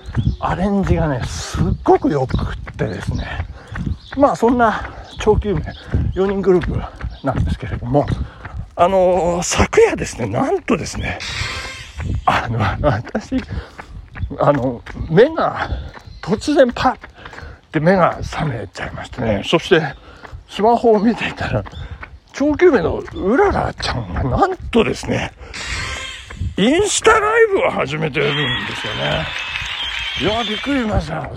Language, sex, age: Japanese, male, 60-79